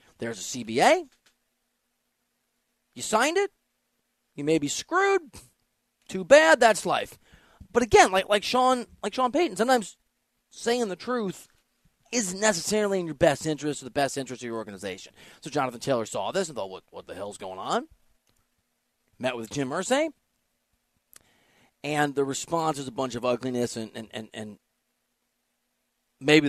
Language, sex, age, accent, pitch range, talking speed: English, male, 30-49, American, 135-215 Hz, 155 wpm